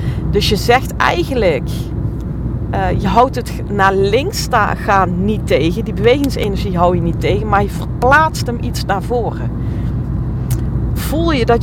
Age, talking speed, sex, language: 40-59, 155 wpm, female, Dutch